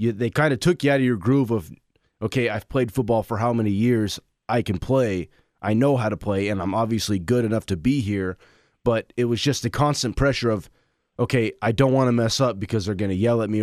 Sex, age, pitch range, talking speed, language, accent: male, 20-39, 105-125 Hz, 245 wpm, English, American